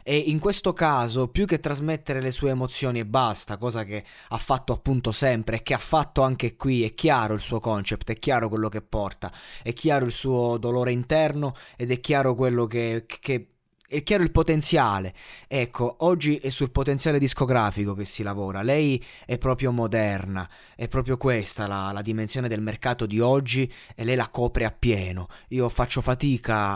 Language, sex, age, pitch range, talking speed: Italian, male, 20-39, 110-135 Hz, 185 wpm